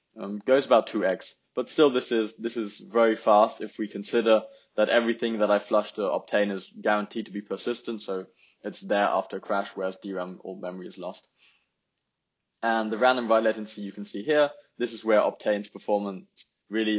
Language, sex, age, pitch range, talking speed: English, male, 20-39, 100-115 Hz, 190 wpm